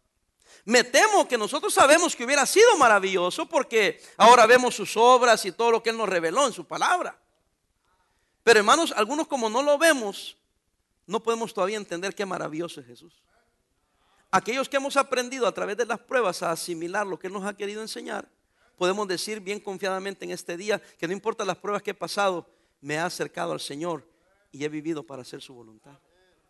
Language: English